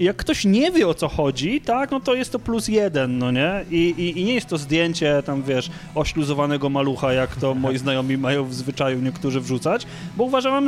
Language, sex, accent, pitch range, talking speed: Polish, male, native, 145-185 Hz, 215 wpm